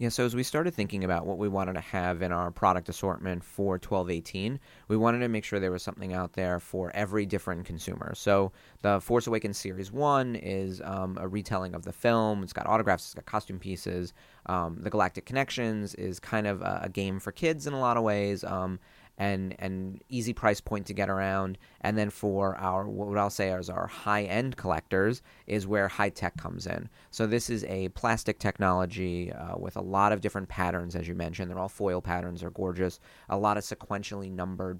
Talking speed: 205 wpm